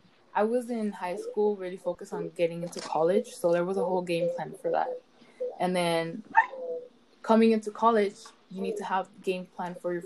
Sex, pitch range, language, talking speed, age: female, 175-230 Hz, English, 195 wpm, 20-39